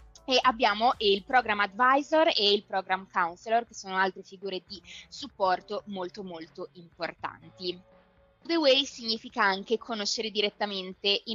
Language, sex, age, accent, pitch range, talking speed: Italian, female, 20-39, native, 190-230 Hz, 125 wpm